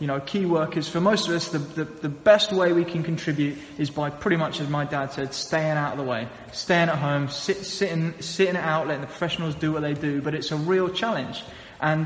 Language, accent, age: English, British, 20-39